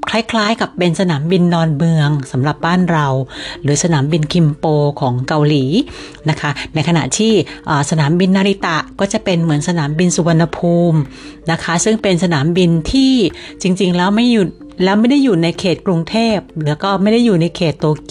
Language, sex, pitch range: Thai, female, 150-195 Hz